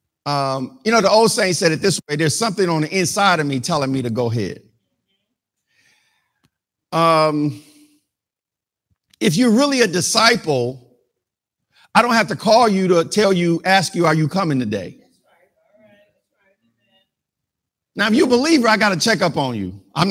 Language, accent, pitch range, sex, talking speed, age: English, American, 165-235 Hz, male, 165 wpm, 50-69